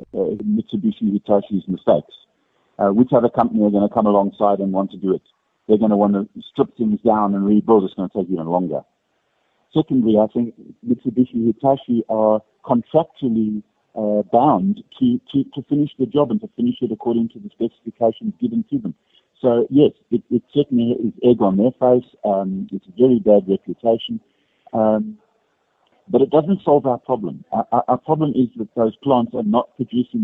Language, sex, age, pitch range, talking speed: English, male, 50-69, 110-145 Hz, 185 wpm